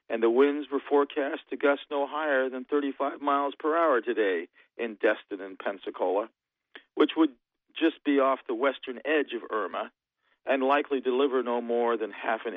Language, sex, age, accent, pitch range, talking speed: English, male, 50-69, American, 125-160 Hz, 175 wpm